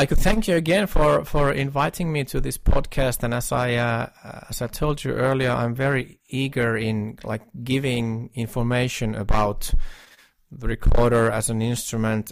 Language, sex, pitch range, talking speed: English, male, 100-120 Hz, 165 wpm